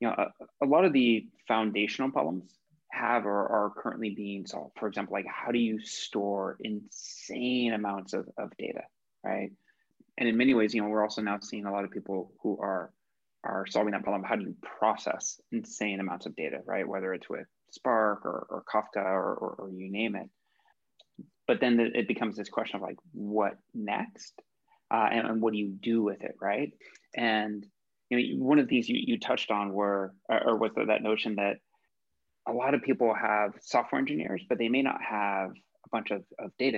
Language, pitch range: English, 100-115 Hz